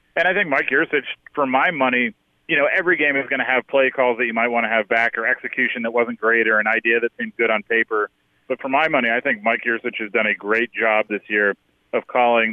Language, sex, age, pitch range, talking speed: English, male, 30-49, 105-120 Hz, 260 wpm